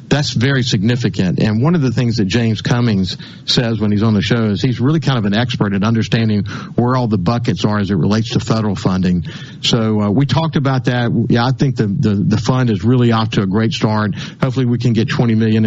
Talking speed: 240 wpm